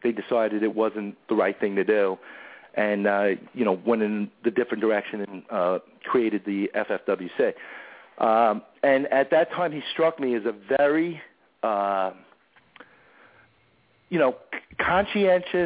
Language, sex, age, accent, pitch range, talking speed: English, male, 40-59, American, 110-150 Hz, 145 wpm